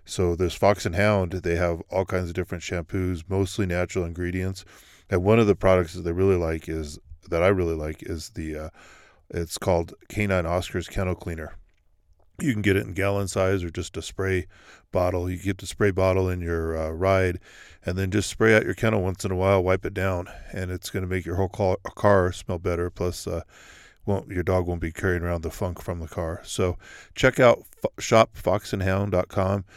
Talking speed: 210 wpm